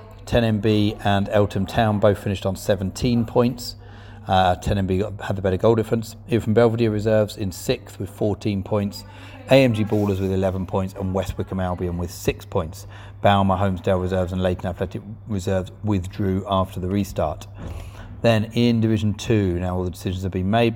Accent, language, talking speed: British, English, 175 wpm